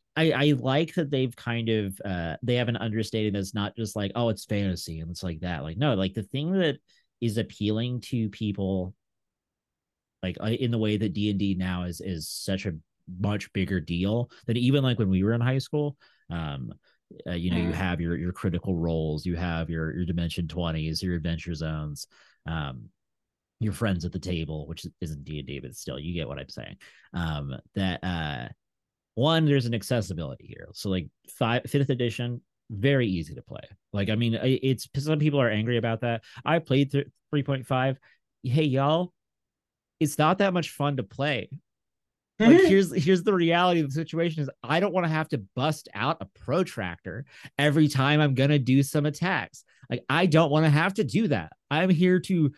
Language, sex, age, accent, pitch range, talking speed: English, male, 30-49, American, 90-145 Hz, 195 wpm